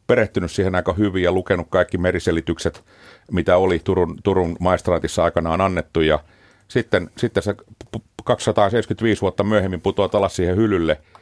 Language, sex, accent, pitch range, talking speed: Finnish, male, native, 90-115 Hz, 135 wpm